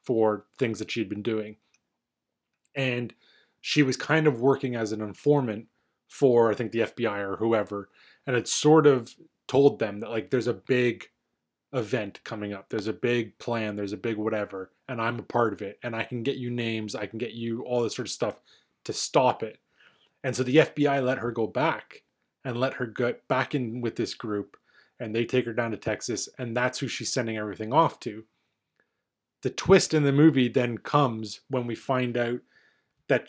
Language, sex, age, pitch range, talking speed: English, male, 20-39, 110-135 Hz, 200 wpm